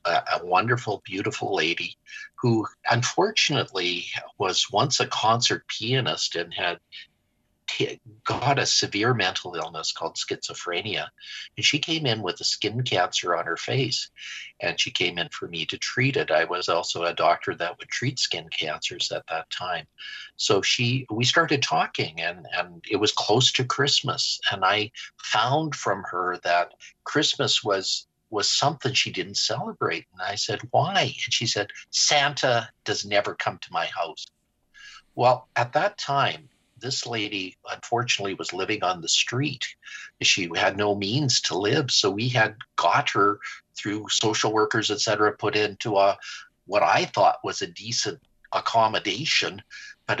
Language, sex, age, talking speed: English, male, 50-69, 155 wpm